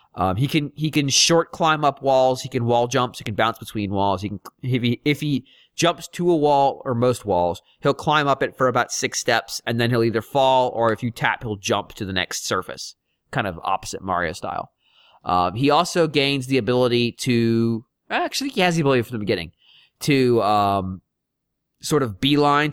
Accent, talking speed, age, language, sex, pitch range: American, 205 wpm, 30-49, English, male, 110-145 Hz